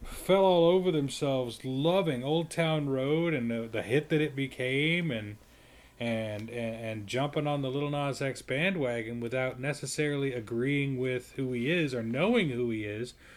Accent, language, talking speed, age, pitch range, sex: American, English, 170 wpm, 30-49, 125-170 Hz, male